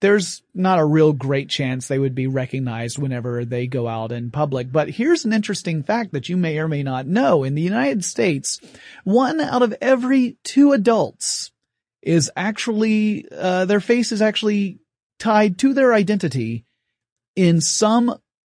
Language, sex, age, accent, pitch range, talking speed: English, male, 30-49, American, 135-185 Hz, 165 wpm